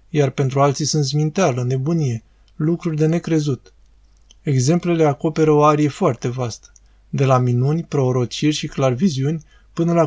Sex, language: male, Romanian